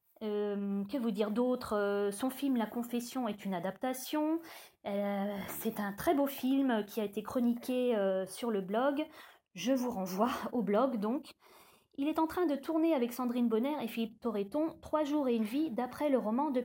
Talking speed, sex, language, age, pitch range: 190 wpm, female, French, 20-39, 210-275 Hz